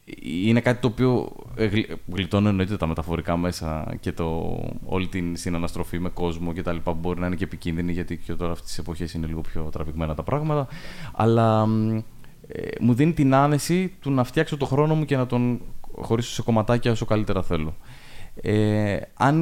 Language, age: Greek, 20-39